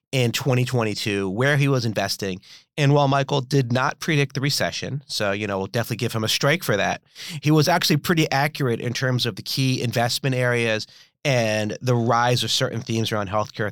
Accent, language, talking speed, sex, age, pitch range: American, English, 195 wpm, male, 30-49, 115-150 Hz